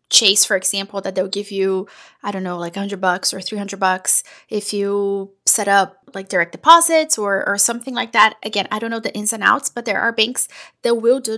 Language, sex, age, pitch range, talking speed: English, female, 20-39, 210-250 Hz, 225 wpm